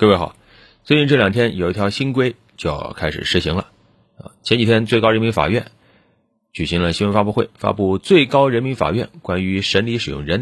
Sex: male